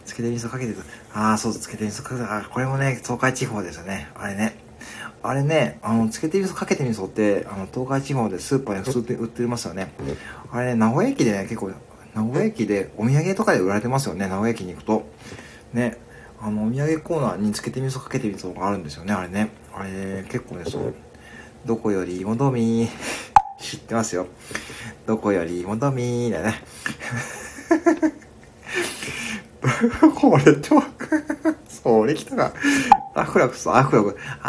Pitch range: 105-135 Hz